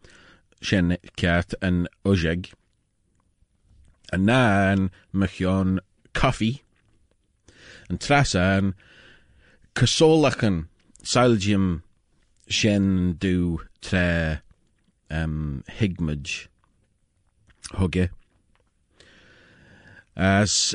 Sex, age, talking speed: male, 30-49, 50 wpm